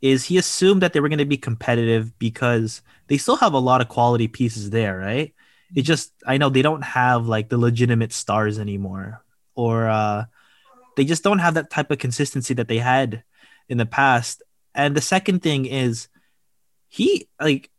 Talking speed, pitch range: 190 wpm, 115-145 Hz